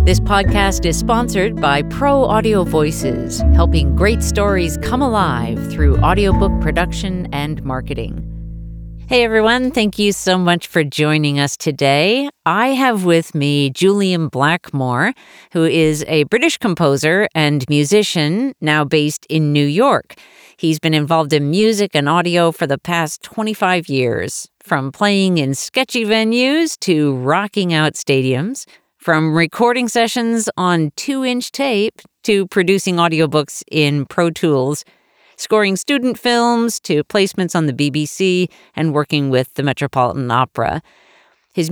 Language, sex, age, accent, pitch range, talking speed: English, female, 50-69, American, 145-205 Hz, 135 wpm